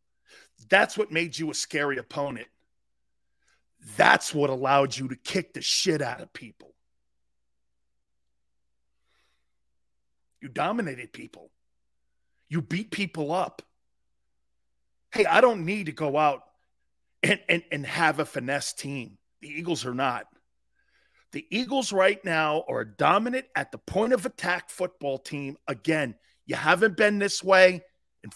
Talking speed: 135 wpm